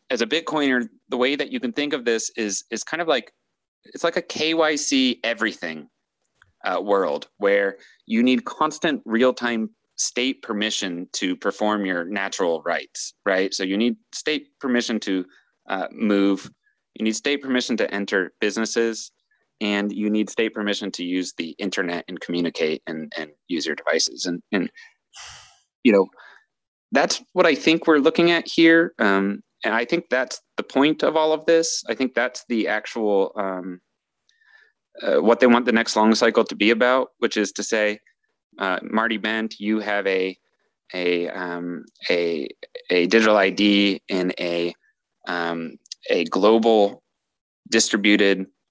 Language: English